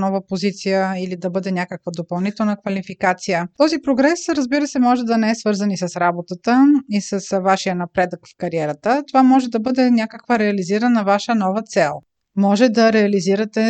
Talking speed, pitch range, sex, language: 165 wpm, 185-225 Hz, female, Bulgarian